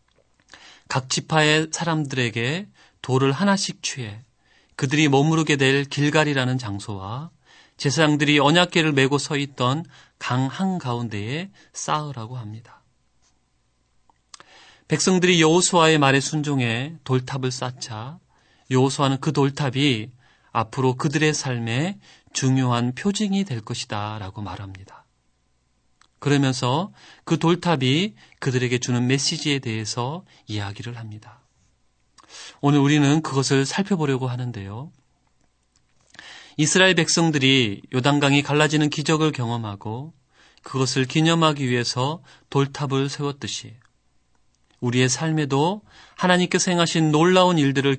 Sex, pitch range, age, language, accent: male, 115-155 Hz, 30-49, Korean, native